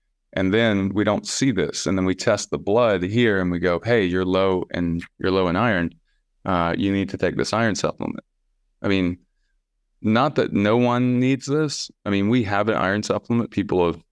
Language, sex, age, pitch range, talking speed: English, male, 20-39, 90-105 Hz, 210 wpm